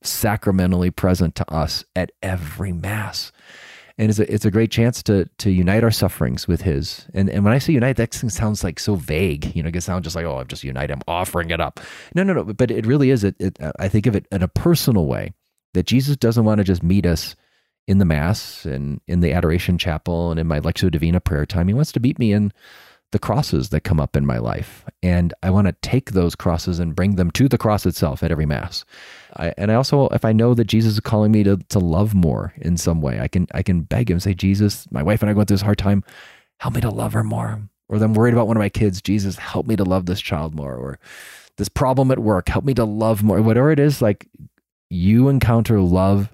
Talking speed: 250 wpm